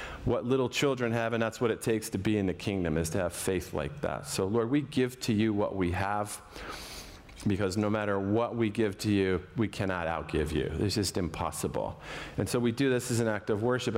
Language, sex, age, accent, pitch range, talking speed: English, male, 40-59, American, 100-130 Hz, 230 wpm